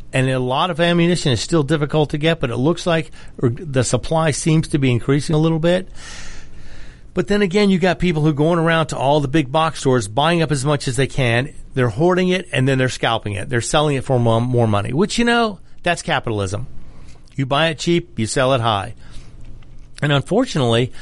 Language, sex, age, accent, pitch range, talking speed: English, male, 40-59, American, 120-160 Hz, 215 wpm